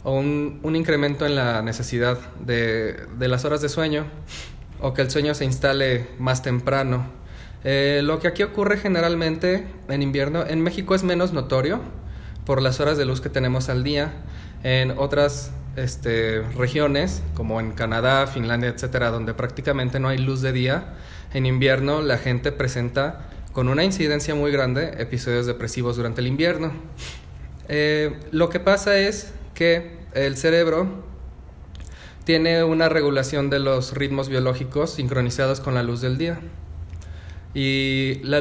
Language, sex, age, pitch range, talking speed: Spanish, male, 20-39, 120-145 Hz, 150 wpm